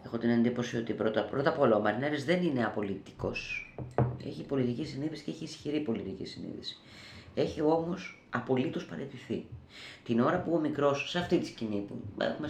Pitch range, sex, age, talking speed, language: 115-185 Hz, female, 30-49, 175 wpm, Greek